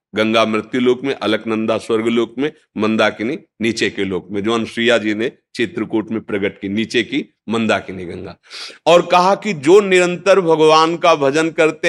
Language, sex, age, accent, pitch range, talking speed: Hindi, male, 50-69, native, 110-175 Hz, 170 wpm